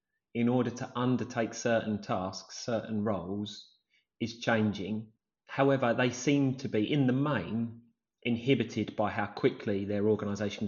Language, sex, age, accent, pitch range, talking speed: English, male, 30-49, British, 110-140 Hz, 135 wpm